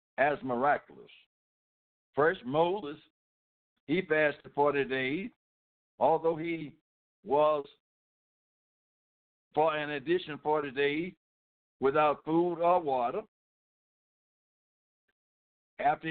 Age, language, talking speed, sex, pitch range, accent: 60-79, English, 80 wpm, male, 125-155 Hz, American